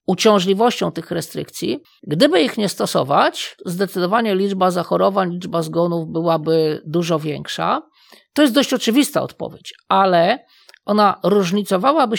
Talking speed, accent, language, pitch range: 115 wpm, native, Polish, 175-220 Hz